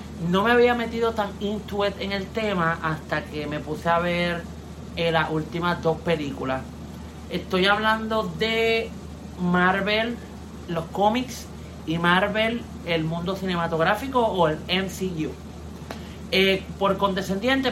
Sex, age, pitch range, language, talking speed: male, 30-49, 155-205 Hz, Spanish, 125 wpm